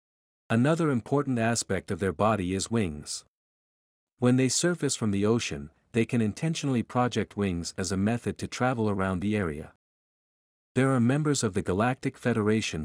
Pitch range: 95-125 Hz